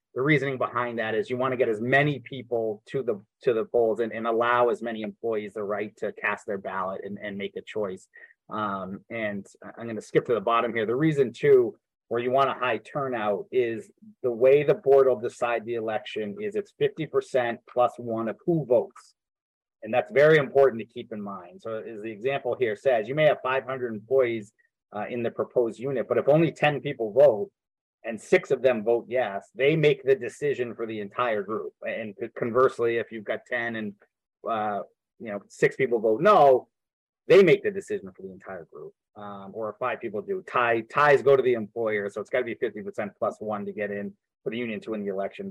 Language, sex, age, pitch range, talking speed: English, male, 30-49, 110-145 Hz, 220 wpm